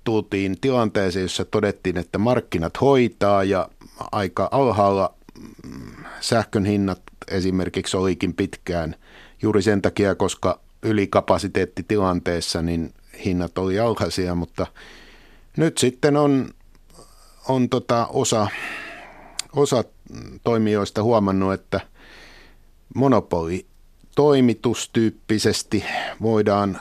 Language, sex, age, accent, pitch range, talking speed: Finnish, male, 50-69, native, 95-115 Hz, 85 wpm